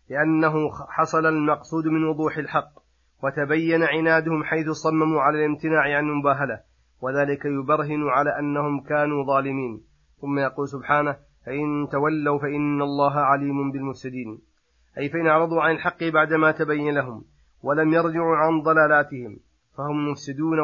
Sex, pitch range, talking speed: male, 135-150 Hz, 125 wpm